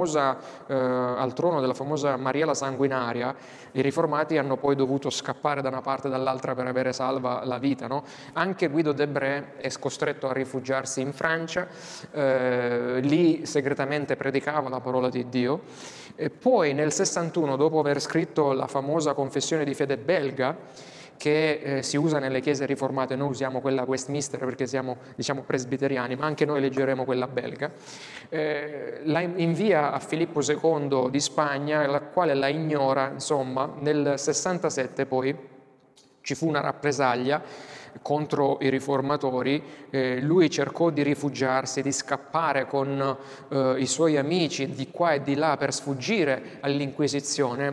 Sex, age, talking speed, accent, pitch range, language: male, 30-49, 145 wpm, native, 130-150 Hz, Italian